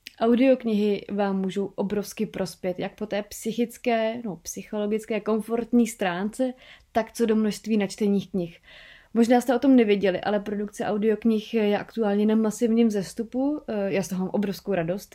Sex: female